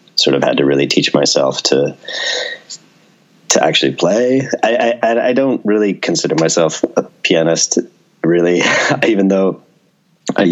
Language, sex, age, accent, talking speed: English, male, 30-49, American, 135 wpm